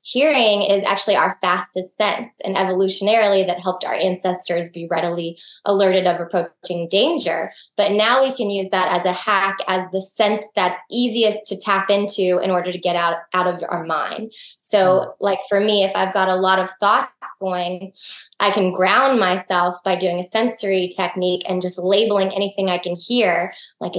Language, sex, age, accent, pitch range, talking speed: English, female, 20-39, American, 185-215 Hz, 185 wpm